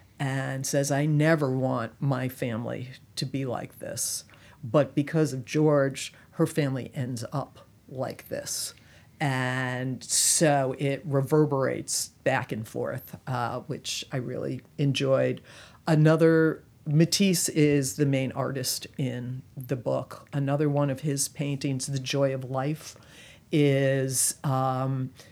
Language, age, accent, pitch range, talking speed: English, 50-69, American, 130-150 Hz, 125 wpm